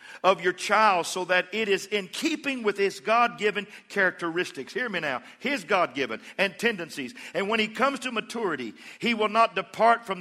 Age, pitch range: 50-69, 175-235 Hz